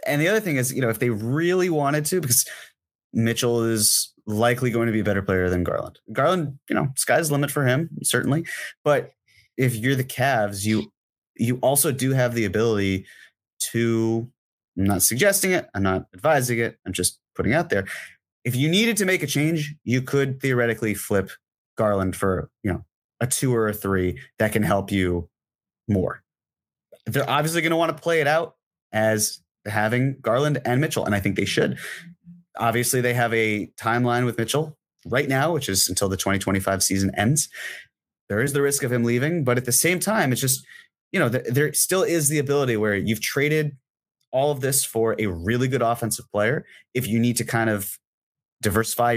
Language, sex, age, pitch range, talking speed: English, male, 30-49, 105-140 Hz, 195 wpm